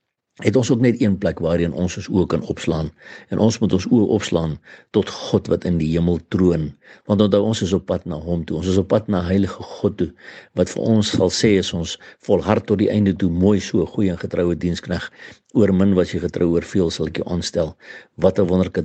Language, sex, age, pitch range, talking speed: English, male, 60-79, 85-100 Hz, 230 wpm